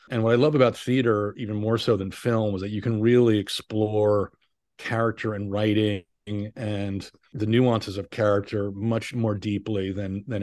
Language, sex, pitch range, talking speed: English, male, 100-120 Hz, 175 wpm